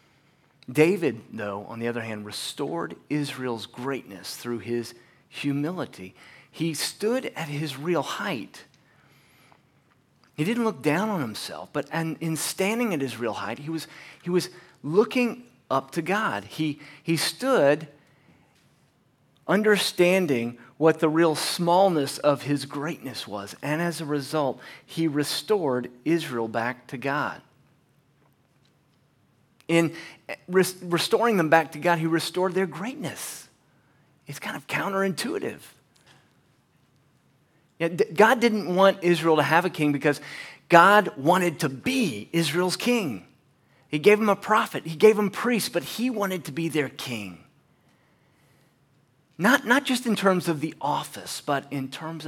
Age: 40-59